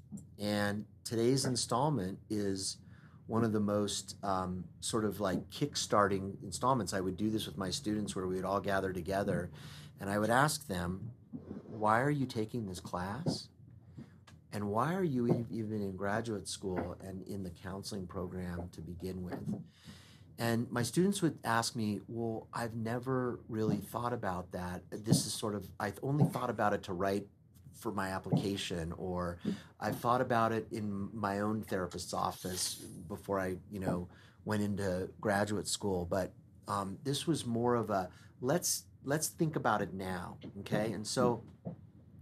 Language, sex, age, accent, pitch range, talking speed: English, male, 40-59, American, 95-115 Hz, 165 wpm